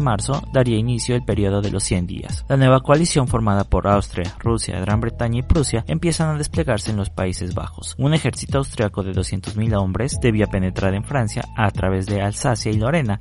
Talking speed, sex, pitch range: 195 wpm, male, 100-130 Hz